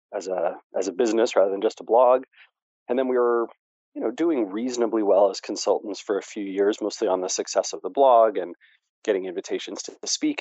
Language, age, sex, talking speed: English, 30-49, male, 215 wpm